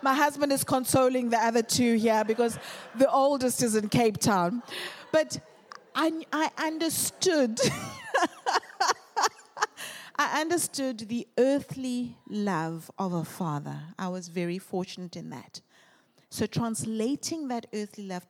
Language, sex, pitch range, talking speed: English, female, 175-255 Hz, 125 wpm